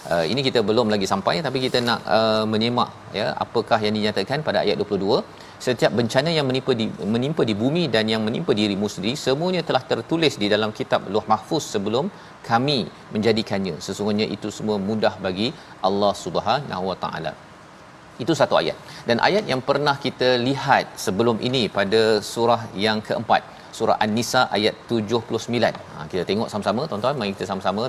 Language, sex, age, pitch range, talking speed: Malayalam, male, 40-59, 105-130 Hz, 170 wpm